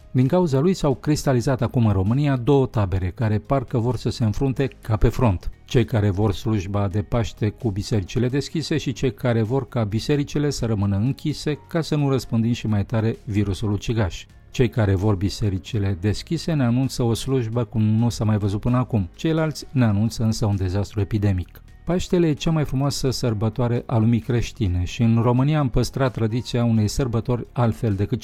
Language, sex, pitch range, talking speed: Romanian, male, 110-135 Hz, 185 wpm